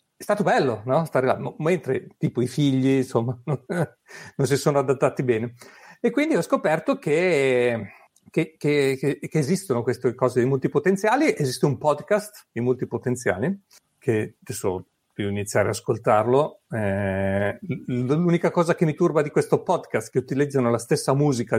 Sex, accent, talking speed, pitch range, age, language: male, native, 160 wpm, 120-165 Hz, 40-59, Italian